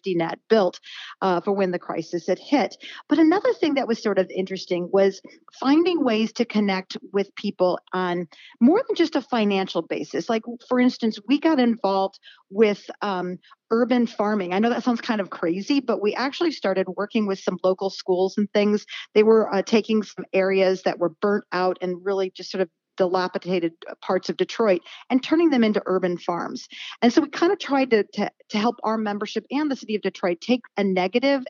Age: 40-59